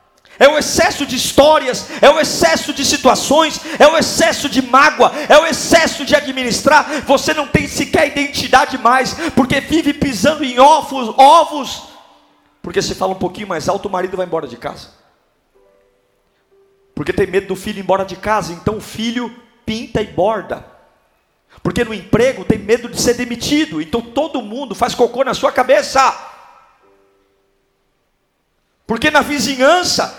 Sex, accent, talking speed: male, Brazilian, 155 wpm